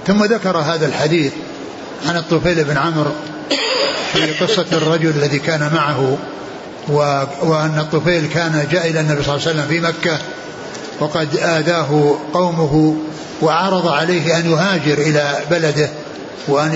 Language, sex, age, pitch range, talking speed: Arabic, male, 60-79, 155-180 Hz, 135 wpm